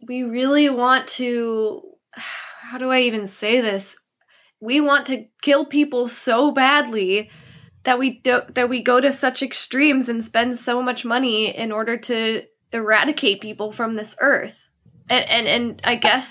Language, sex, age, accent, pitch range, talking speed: English, female, 20-39, American, 195-250 Hz, 160 wpm